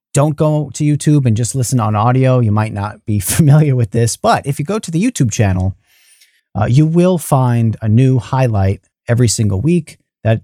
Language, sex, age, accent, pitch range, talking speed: English, male, 30-49, American, 105-140 Hz, 200 wpm